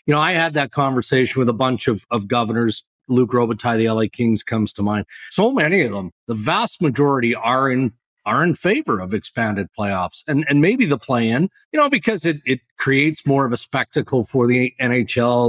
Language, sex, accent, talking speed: English, male, American, 210 wpm